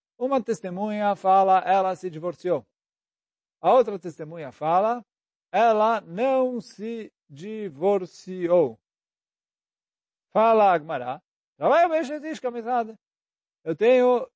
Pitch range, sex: 170-235 Hz, male